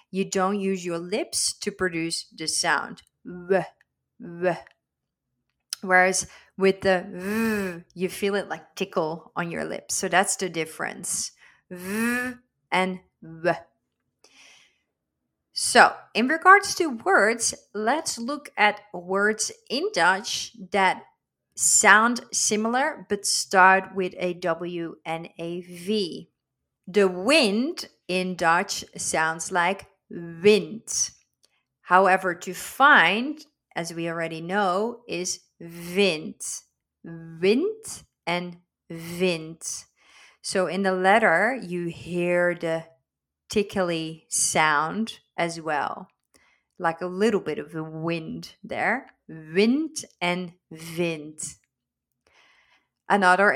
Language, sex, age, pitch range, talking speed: Dutch, female, 30-49, 170-205 Hz, 105 wpm